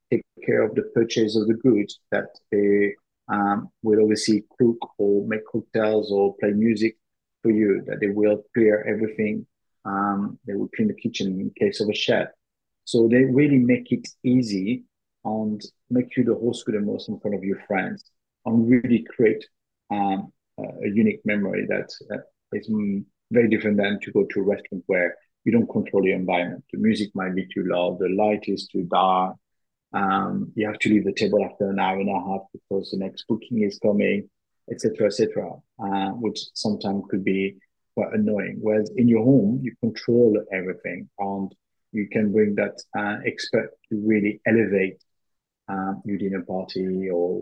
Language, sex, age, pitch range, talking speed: English, male, 50-69, 100-115 Hz, 185 wpm